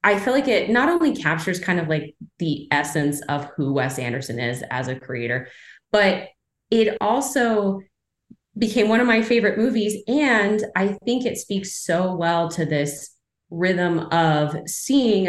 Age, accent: 20-39, American